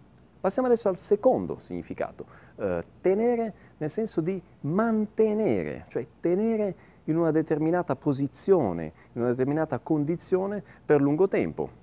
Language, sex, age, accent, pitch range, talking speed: Italian, male, 30-49, native, 115-185 Hz, 120 wpm